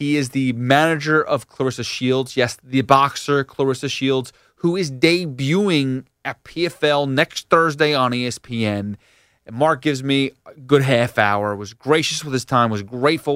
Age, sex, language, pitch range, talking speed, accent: 30-49, male, English, 125-155 Hz, 160 wpm, American